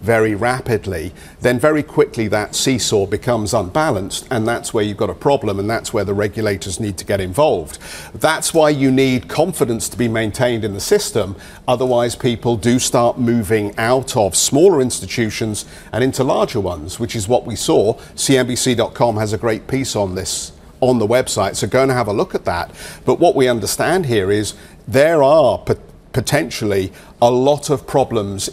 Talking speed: 180 wpm